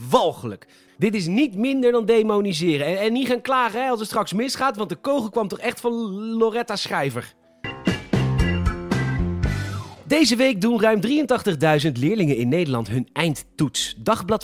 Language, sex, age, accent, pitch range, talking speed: Dutch, male, 40-59, Dutch, 155-240 Hz, 155 wpm